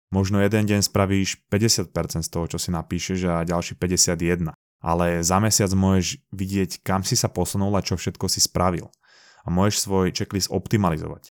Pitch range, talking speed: 90-105 Hz, 170 wpm